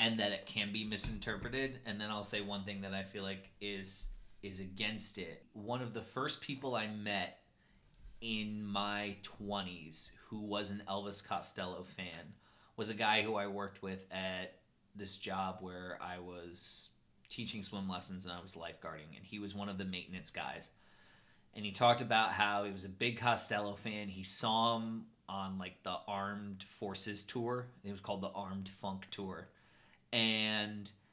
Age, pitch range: 30-49, 100-115 Hz